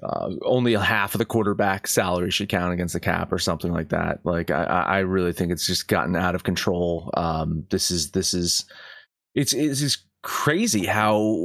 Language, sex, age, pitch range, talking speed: English, male, 30-49, 95-120 Hz, 200 wpm